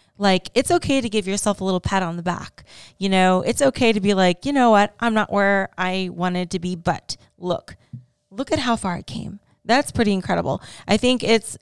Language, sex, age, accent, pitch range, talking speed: English, female, 20-39, American, 185-205 Hz, 220 wpm